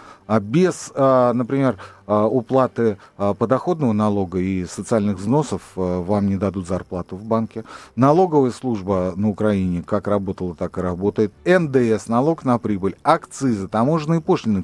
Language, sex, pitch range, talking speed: Russian, male, 100-155 Hz, 125 wpm